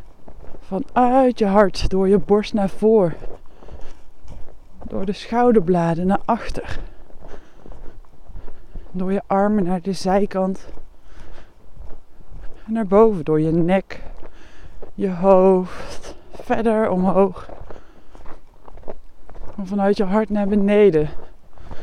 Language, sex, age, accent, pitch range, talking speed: Dutch, female, 20-39, Dutch, 170-215 Hz, 95 wpm